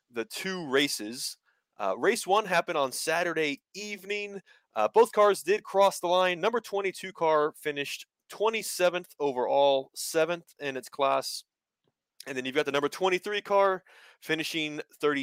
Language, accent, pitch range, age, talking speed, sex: English, American, 120-185 Hz, 30-49, 140 wpm, male